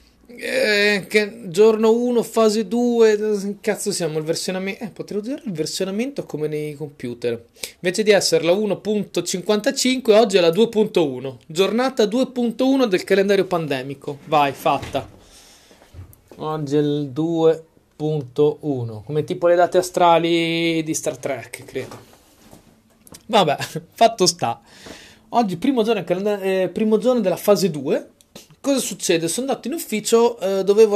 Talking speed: 120 wpm